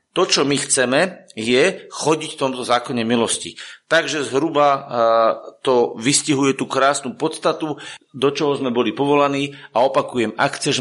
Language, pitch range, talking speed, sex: Slovak, 120-140 Hz, 145 wpm, male